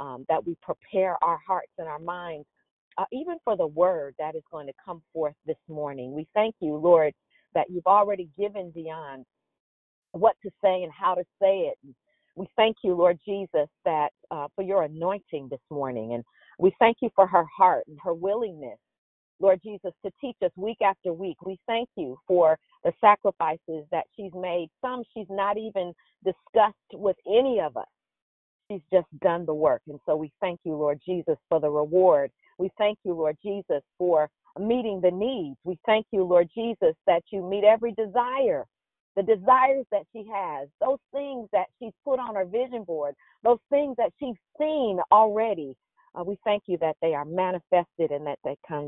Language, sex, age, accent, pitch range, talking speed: English, female, 40-59, American, 160-210 Hz, 190 wpm